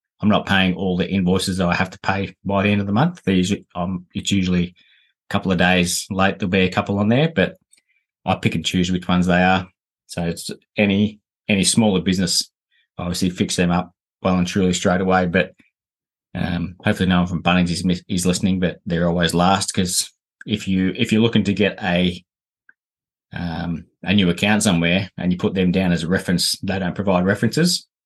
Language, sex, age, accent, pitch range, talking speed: English, male, 20-39, Australian, 90-100 Hz, 205 wpm